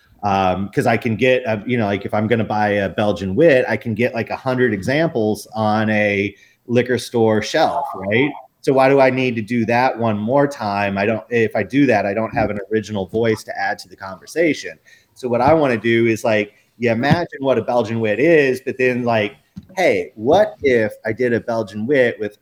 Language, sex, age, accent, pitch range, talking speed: English, male, 30-49, American, 105-125 Hz, 230 wpm